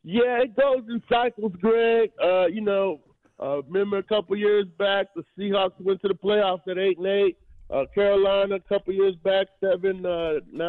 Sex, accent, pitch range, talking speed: male, American, 180-215 Hz, 190 wpm